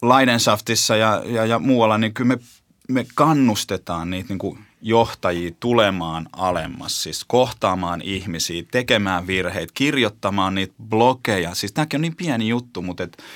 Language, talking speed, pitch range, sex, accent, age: Finnish, 135 wpm, 95-130 Hz, male, native, 30-49